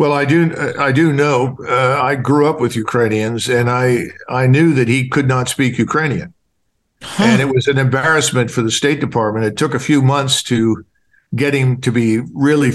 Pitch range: 125-150 Hz